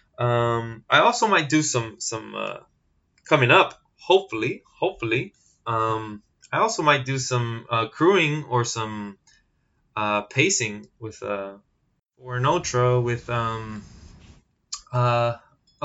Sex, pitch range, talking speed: male, 105-130 Hz, 120 wpm